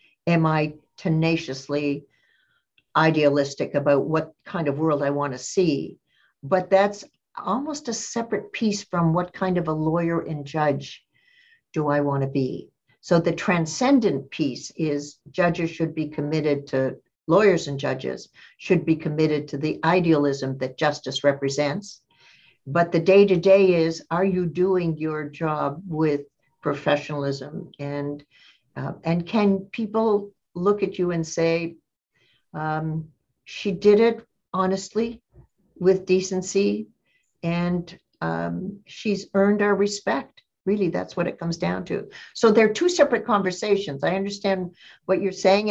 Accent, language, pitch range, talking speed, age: American, English, 150-195 Hz, 140 wpm, 60-79